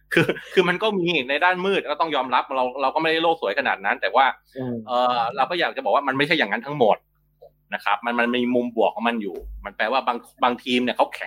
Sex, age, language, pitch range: male, 20-39, Thai, 130-180 Hz